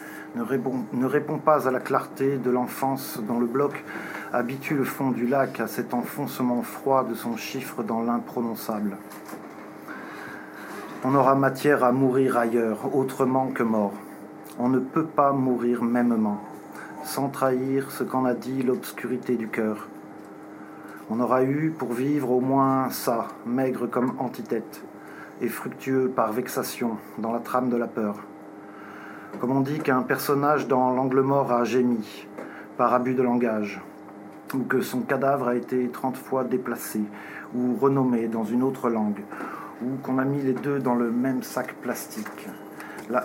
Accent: French